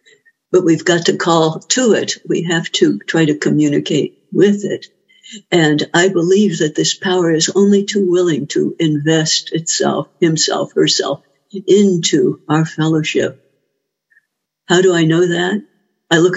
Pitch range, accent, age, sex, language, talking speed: 165-205 Hz, American, 60-79, female, English, 145 wpm